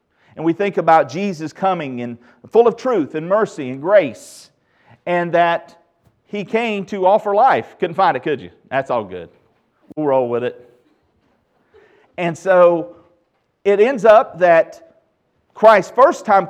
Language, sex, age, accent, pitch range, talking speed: English, male, 40-59, American, 135-195 Hz, 155 wpm